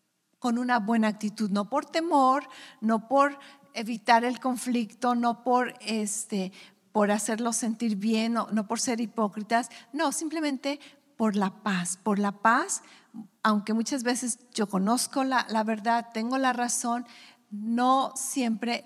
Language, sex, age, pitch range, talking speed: English, female, 50-69, 210-260 Hz, 145 wpm